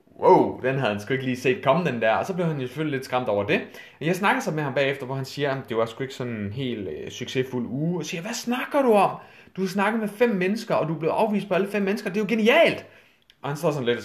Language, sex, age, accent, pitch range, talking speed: Danish, male, 30-49, native, 115-185 Hz, 310 wpm